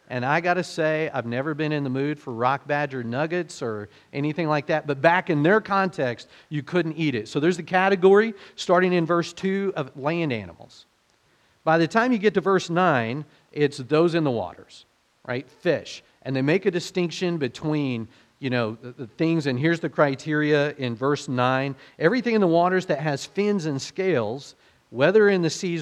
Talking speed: 200 wpm